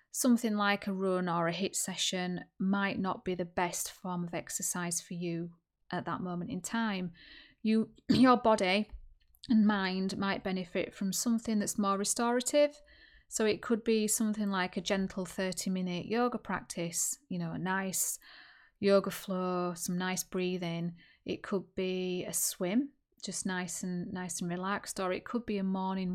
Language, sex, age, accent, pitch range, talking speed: English, female, 30-49, British, 180-205 Hz, 170 wpm